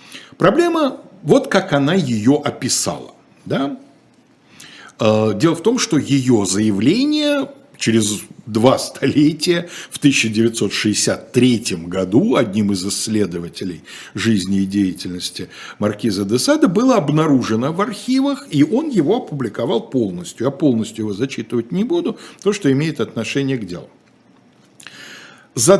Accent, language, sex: native, Russian, male